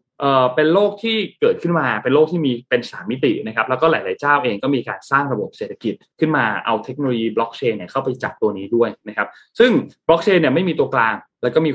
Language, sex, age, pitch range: Thai, male, 20-39, 120-170 Hz